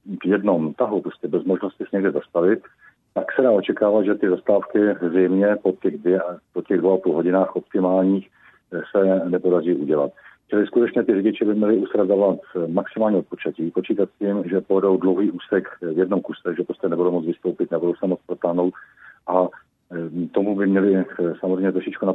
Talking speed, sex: 165 wpm, male